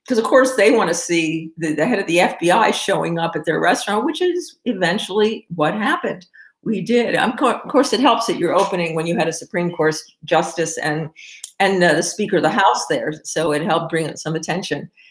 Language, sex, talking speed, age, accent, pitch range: English, female, 220 wpm, 50-69, American, 170-230 Hz